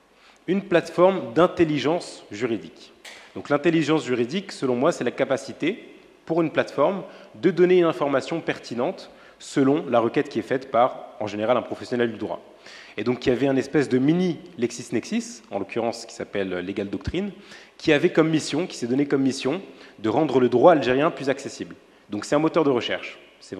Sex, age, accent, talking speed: male, 30-49, French, 185 wpm